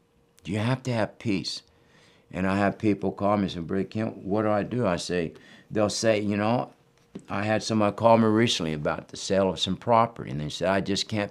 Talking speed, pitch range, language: 235 wpm, 95-120 Hz, English